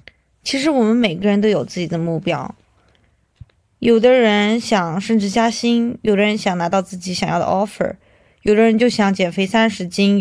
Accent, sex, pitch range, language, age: native, female, 175-220 Hz, Chinese, 20-39